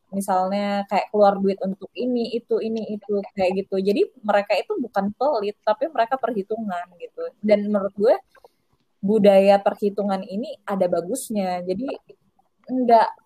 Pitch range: 185-230 Hz